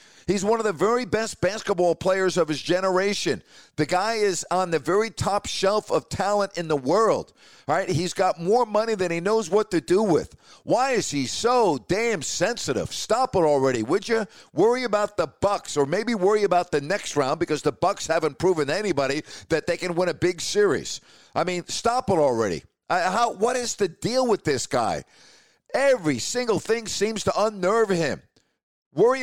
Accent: American